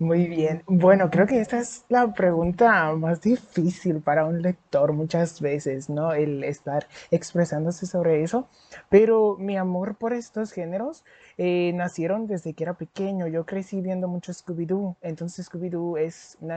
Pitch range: 165-200 Hz